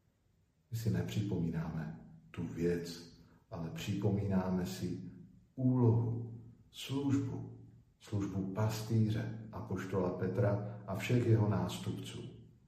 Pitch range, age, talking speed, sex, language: 95-115 Hz, 50-69, 90 wpm, male, Slovak